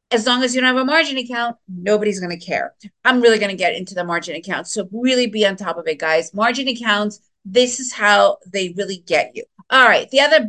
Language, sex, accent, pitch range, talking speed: English, female, American, 205-260 Hz, 245 wpm